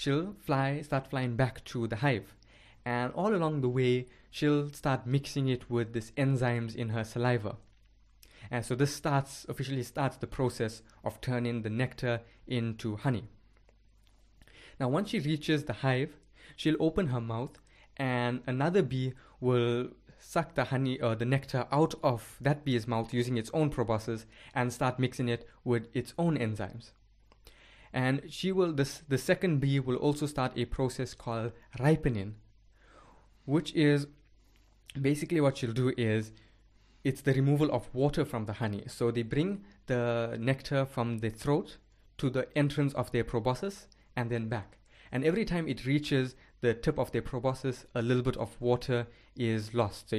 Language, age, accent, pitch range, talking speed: English, 20-39, Indian, 115-140 Hz, 165 wpm